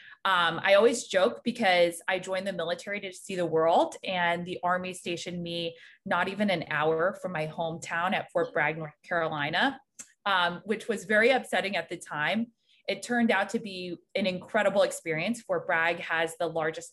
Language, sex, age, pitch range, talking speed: English, female, 20-39, 160-190 Hz, 180 wpm